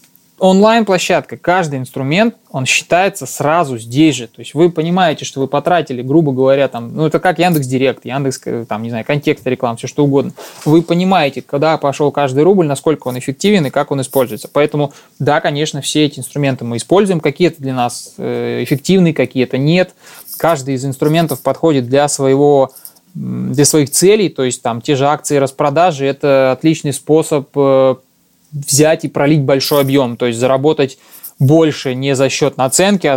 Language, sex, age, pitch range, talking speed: Russian, male, 20-39, 130-155 Hz, 165 wpm